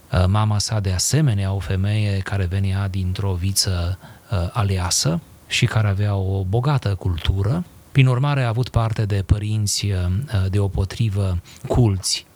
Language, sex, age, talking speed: Romanian, male, 30-49, 140 wpm